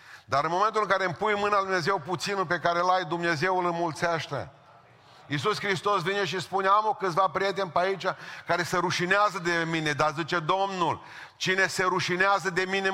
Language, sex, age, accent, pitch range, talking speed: Romanian, male, 40-59, native, 175-205 Hz, 190 wpm